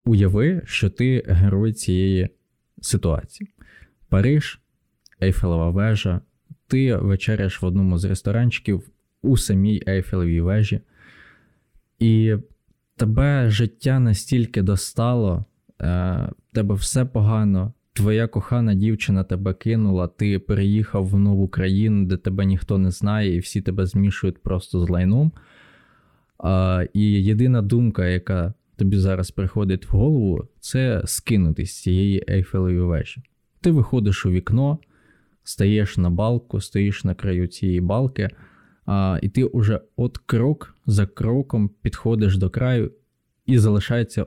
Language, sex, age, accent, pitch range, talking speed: Ukrainian, male, 20-39, native, 95-120 Hz, 120 wpm